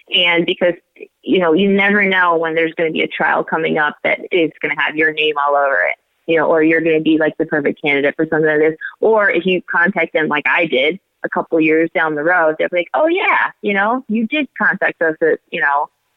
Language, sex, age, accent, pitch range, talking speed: English, female, 20-39, American, 155-185 Hz, 255 wpm